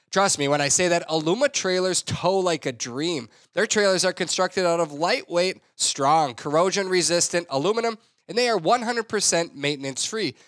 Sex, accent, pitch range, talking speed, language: male, American, 155-210 Hz, 155 wpm, English